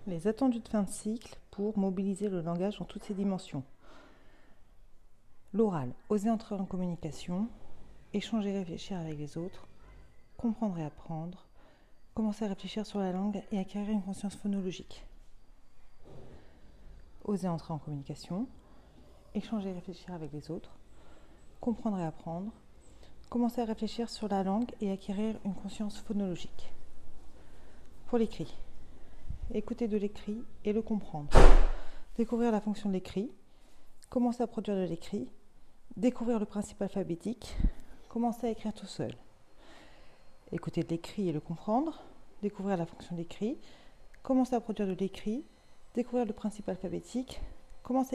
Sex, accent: female, French